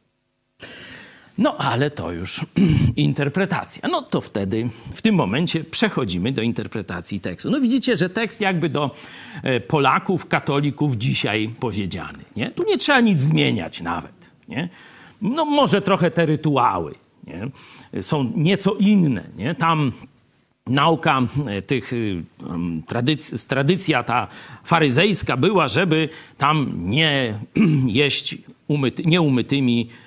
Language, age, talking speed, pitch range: Polish, 50-69, 100 wpm, 125-195 Hz